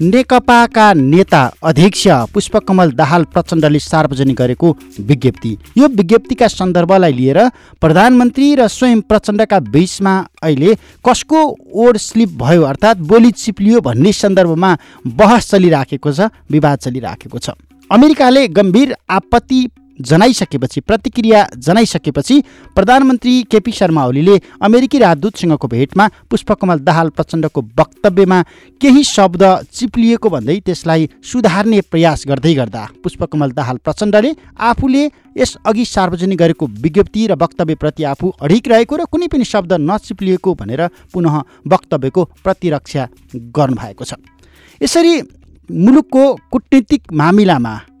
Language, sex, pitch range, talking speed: English, male, 155-230 Hz, 100 wpm